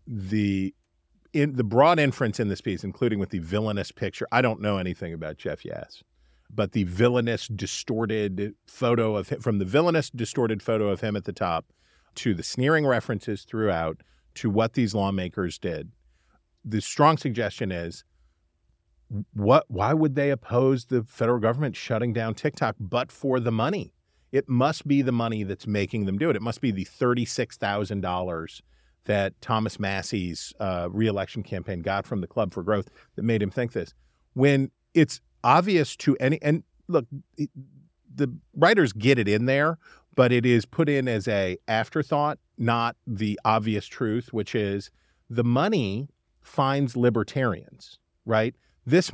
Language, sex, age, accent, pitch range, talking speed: English, male, 40-59, American, 100-130 Hz, 165 wpm